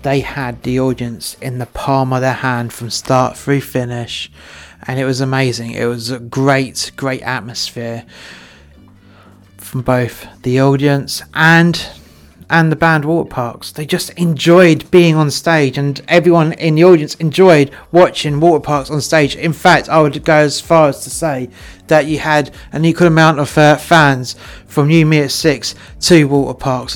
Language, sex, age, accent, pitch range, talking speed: English, male, 30-49, British, 120-155 Hz, 165 wpm